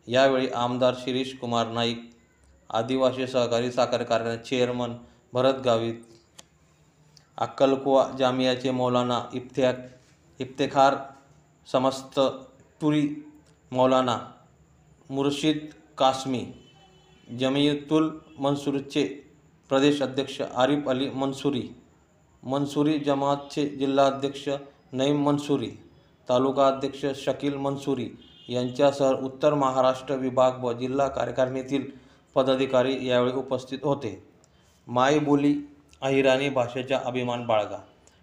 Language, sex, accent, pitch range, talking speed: Marathi, male, native, 120-140 Hz, 85 wpm